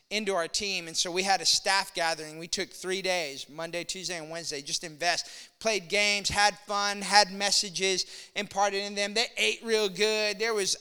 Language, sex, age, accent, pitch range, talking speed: English, male, 20-39, American, 170-210 Hz, 195 wpm